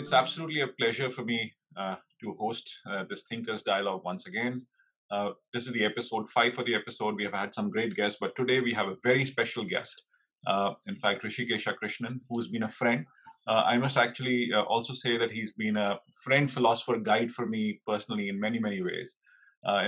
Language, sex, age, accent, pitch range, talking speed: English, male, 30-49, Indian, 110-135 Hz, 210 wpm